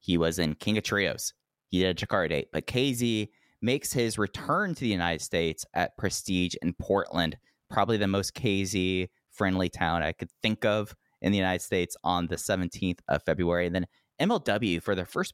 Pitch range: 90-110 Hz